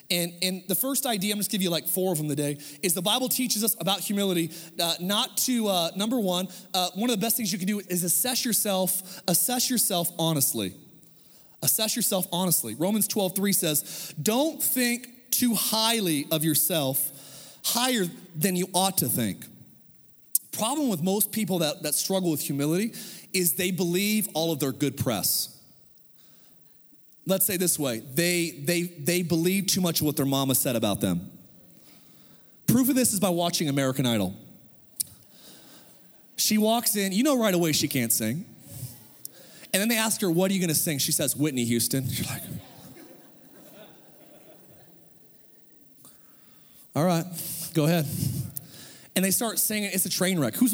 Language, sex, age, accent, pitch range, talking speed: English, male, 30-49, American, 155-205 Hz, 170 wpm